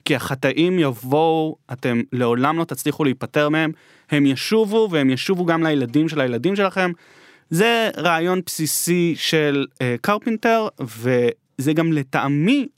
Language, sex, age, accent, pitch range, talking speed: Hebrew, male, 20-39, native, 140-185 Hz, 125 wpm